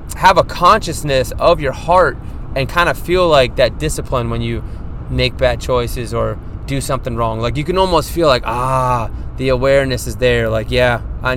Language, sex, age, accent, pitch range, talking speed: English, male, 20-39, American, 120-145 Hz, 190 wpm